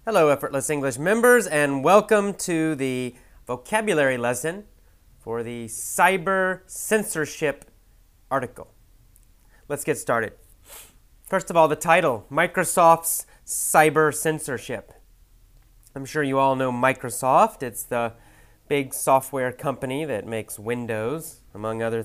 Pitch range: 115-160 Hz